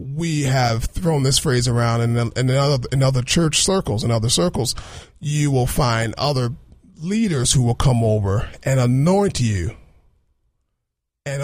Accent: American